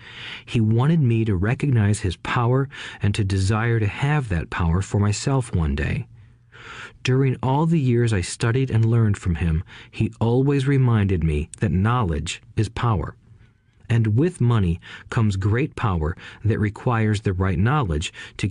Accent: American